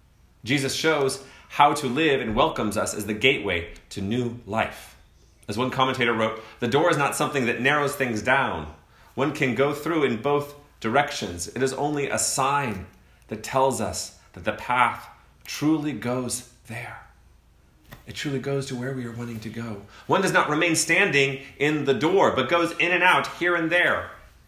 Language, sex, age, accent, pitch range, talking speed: English, male, 30-49, American, 110-160 Hz, 180 wpm